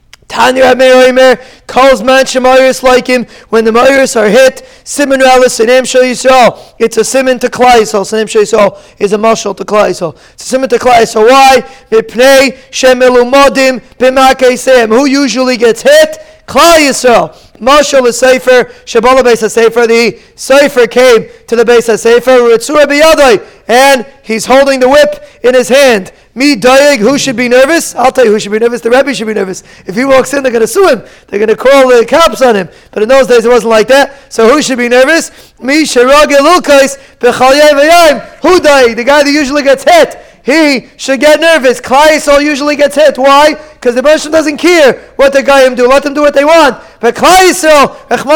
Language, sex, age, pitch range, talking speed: English, male, 20-39, 245-290 Hz, 190 wpm